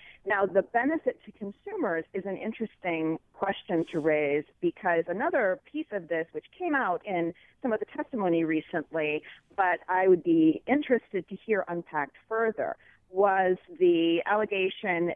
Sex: female